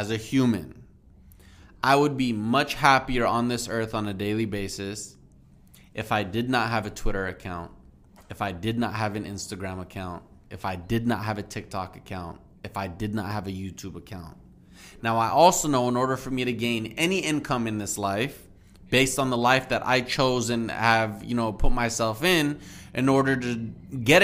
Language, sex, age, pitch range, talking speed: English, male, 20-39, 100-130 Hz, 195 wpm